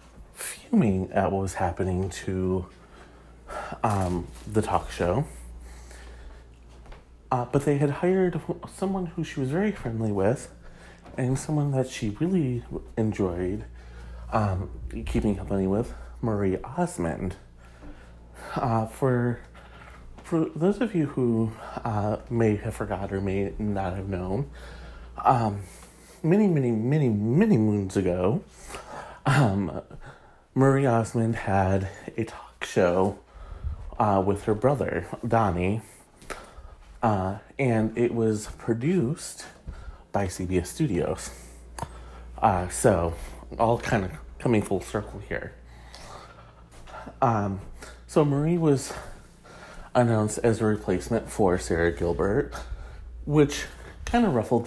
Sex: male